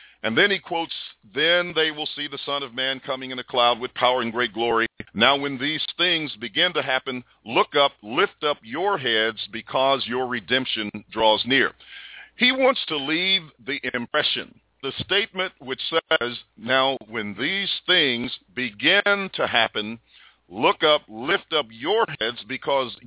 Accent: American